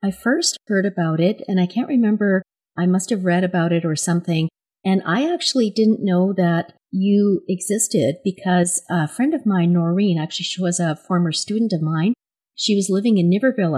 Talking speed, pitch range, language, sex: 190 wpm, 160-190 Hz, English, female